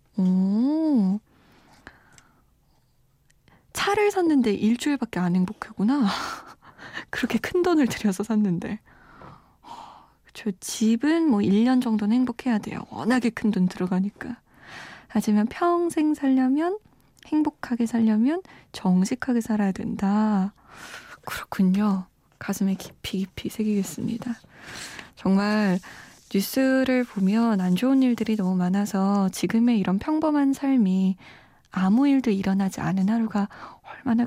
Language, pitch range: Korean, 200-260 Hz